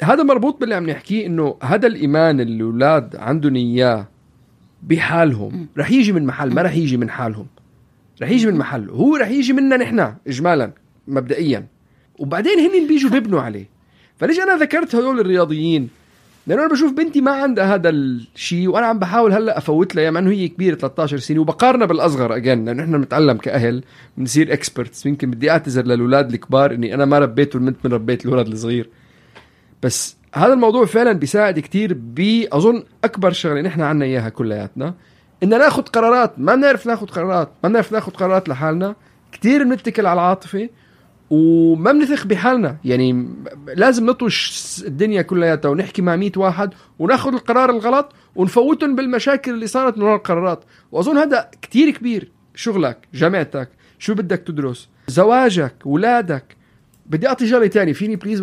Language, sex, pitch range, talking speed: Arabic, male, 140-230 Hz, 160 wpm